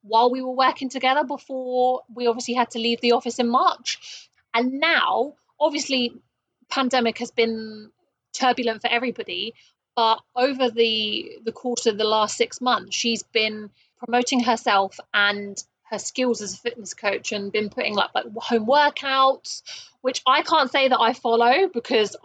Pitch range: 215-255 Hz